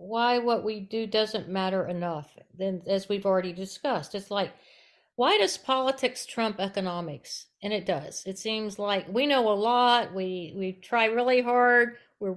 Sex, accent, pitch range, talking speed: female, American, 190-240 Hz, 170 wpm